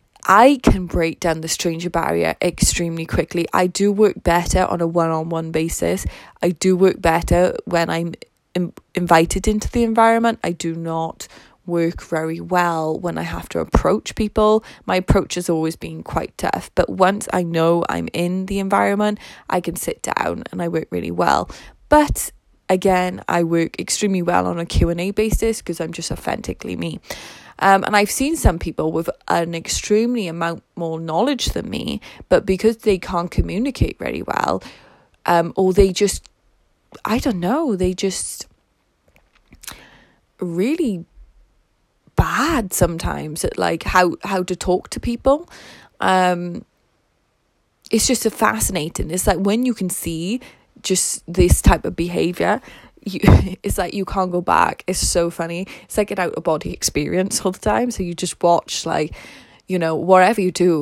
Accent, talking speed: British, 160 wpm